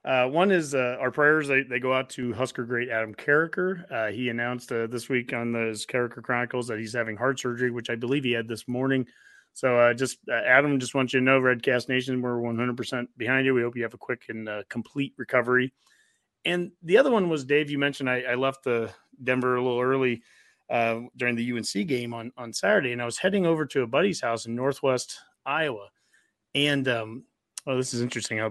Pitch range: 120-135 Hz